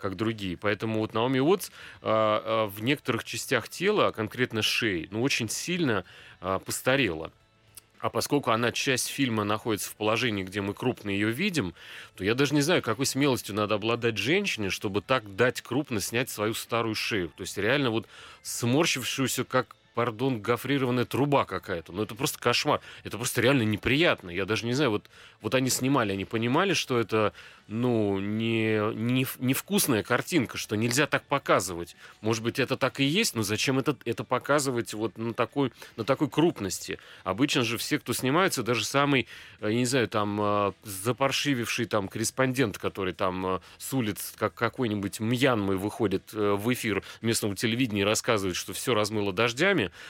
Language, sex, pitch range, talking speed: Russian, male, 105-130 Hz, 165 wpm